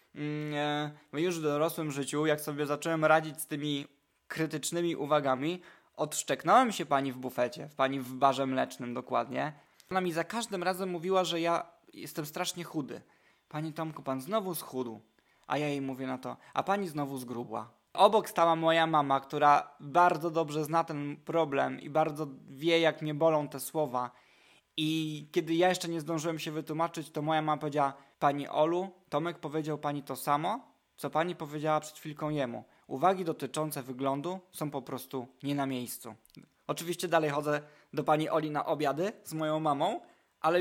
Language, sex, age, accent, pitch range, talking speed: Polish, male, 20-39, native, 135-165 Hz, 170 wpm